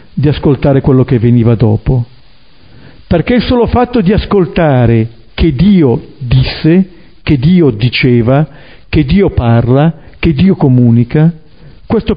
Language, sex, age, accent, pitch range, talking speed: Italian, male, 50-69, native, 130-185 Hz, 125 wpm